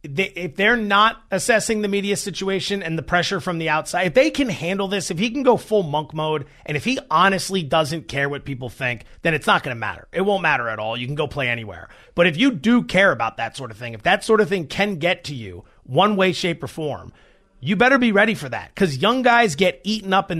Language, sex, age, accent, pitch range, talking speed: English, male, 30-49, American, 170-225 Hz, 255 wpm